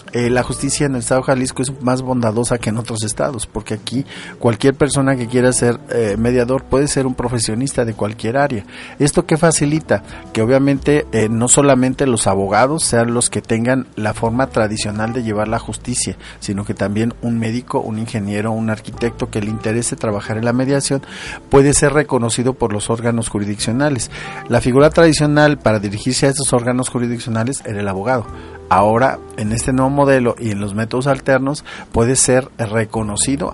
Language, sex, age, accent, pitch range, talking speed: Spanish, male, 40-59, Mexican, 110-130 Hz, 180 wpm